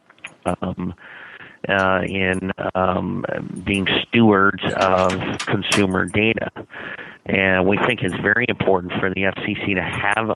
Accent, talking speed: American, 115 wpm